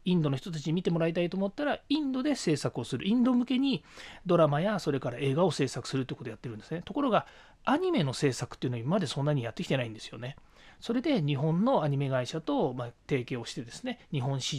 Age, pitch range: 40-59, 125-205 Hz